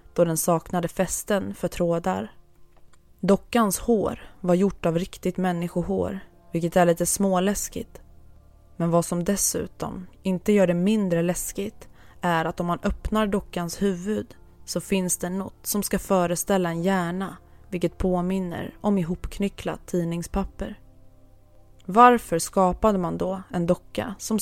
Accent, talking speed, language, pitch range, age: native, 135 wpm, Swedish, 170-195 Hz, 20-39